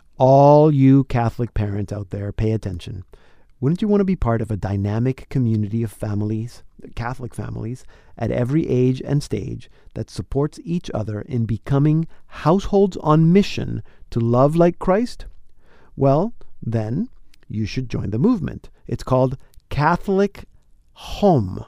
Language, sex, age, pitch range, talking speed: English, male, 50-69, 110-150 Hz, 140 wpm